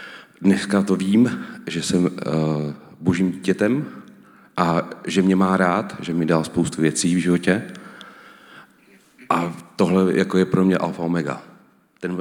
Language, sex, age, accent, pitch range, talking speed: Czech, male, 40-59, native, 90-105 Hz, 145 wpm